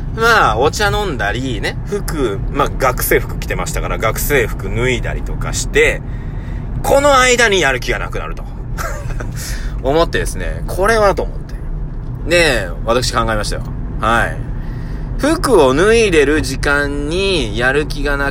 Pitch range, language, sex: 120-165 Hz, Japanese, male